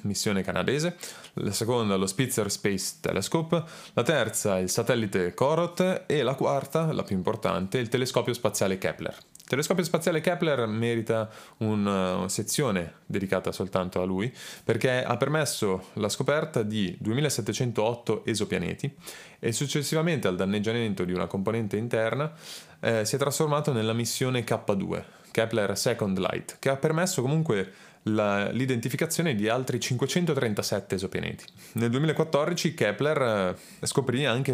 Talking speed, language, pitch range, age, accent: 130 wpm, Italian, 105-145 Hz, 20-39, native